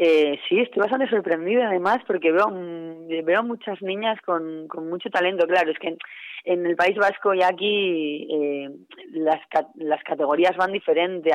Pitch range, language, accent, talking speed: 155-185 Hz, Spanish, Spanish, 165 wpm